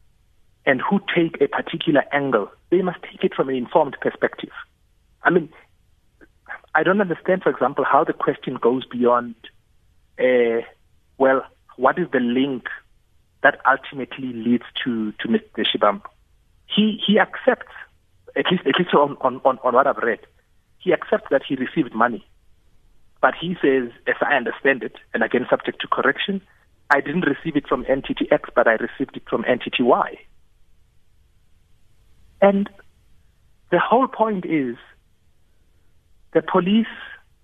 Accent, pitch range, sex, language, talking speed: South African, 125-185 Hz, male, English, 145 wpm